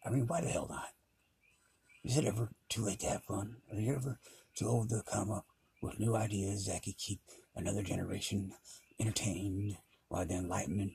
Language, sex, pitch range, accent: English, male, 90-110 Hz, American